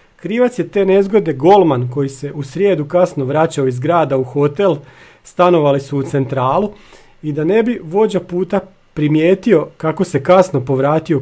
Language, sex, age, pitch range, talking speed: Croatian, male, 40-59, 140-185 Hz, 160 wpm